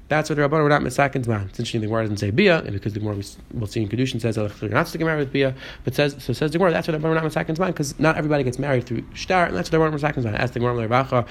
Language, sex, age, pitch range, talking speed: English, male, 20-39, 115-145 Hz, 270 wpm